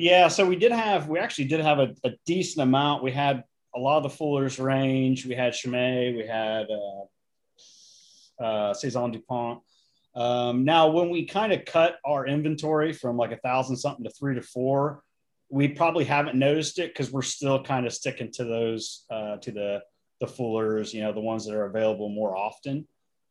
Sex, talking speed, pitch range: male, 195 wpm, 120-145 Hz